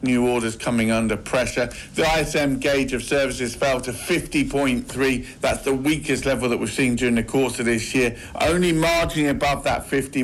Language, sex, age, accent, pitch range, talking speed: English, male, 50-69, British, 120-145 Hz, 180 wpm